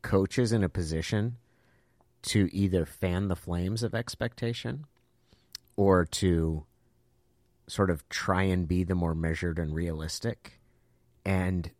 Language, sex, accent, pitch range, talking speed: English, male, American, 85-110 Hz, 120 wpm